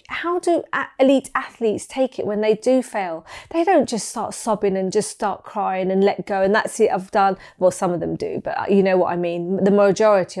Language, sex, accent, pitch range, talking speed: English, female, British, 200-245 Hz, 230 wpm